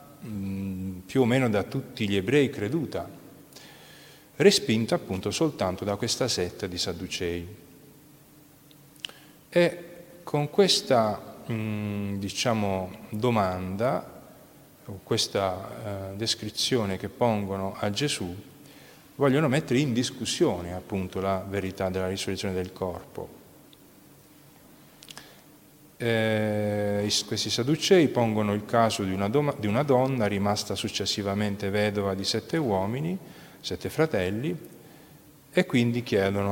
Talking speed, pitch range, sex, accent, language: 95 wpm, 95-135 Hz, male, native, Italian